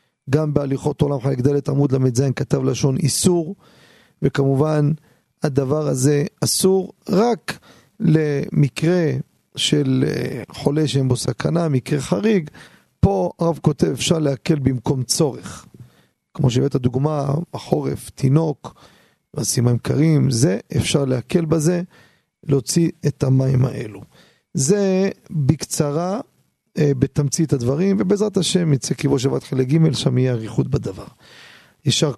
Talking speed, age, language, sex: 115 wpm, 40-59, Hebrew, male